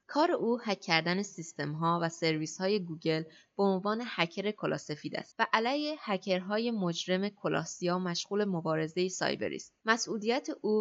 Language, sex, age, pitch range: Persian, female, 20-39, 170-210 Hz